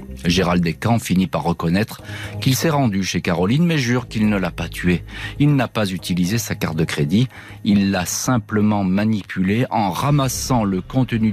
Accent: French